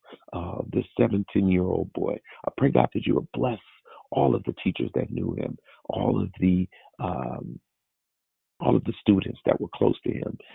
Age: 50-69